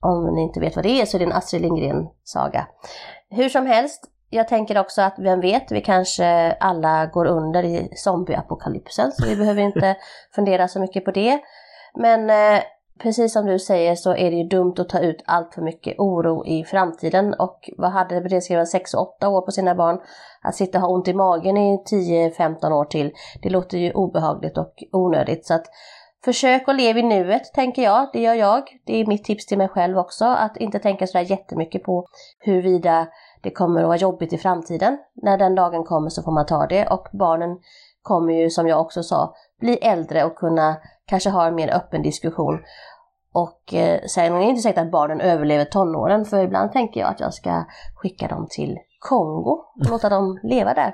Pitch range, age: 170-205 Hz, 30-49